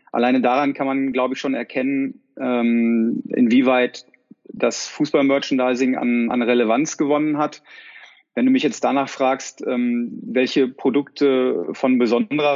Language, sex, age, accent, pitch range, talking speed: German, male, 30-49, German, 125-150 Hz, 125 wpm